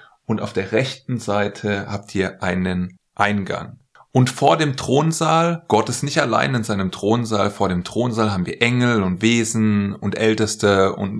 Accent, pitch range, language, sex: German, 100-130 Hz, German, male